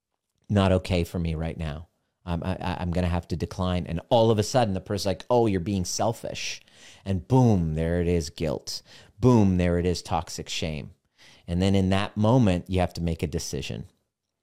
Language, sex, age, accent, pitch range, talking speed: English, male, 30-49, American, 90-105 Hz, 195 wpm